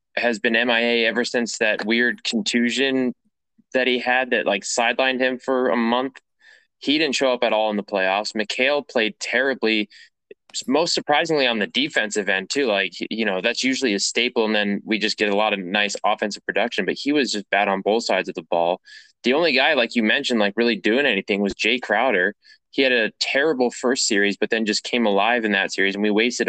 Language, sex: English, male